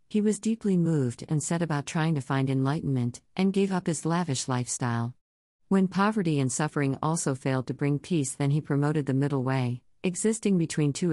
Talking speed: 190 wpm